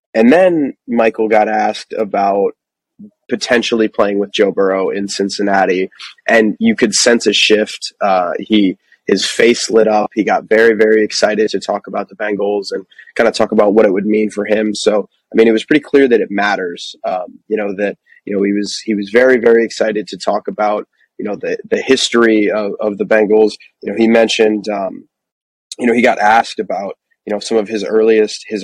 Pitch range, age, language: 105-115 Hz, 20-39, English